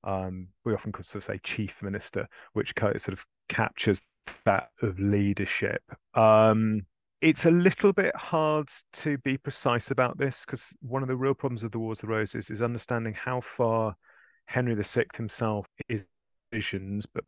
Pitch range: 100-115 Hz